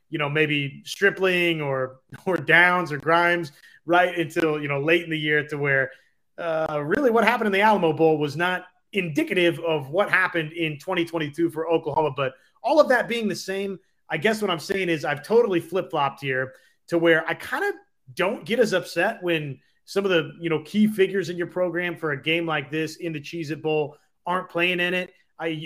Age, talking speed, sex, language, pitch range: 30-49, 210 wpm, male, English, 155-185 Hz